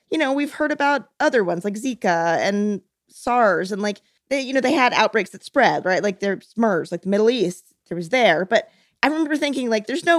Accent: American